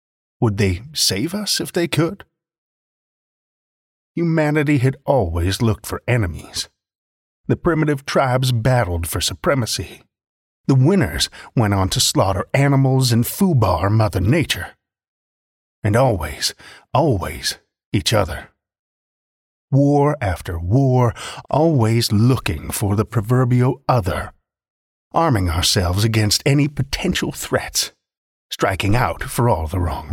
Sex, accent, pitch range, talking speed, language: male, American, 95-135 Hz, 110 wpm, English